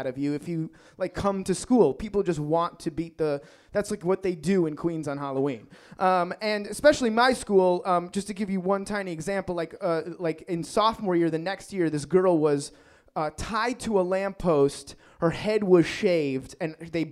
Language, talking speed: English, 205 wpm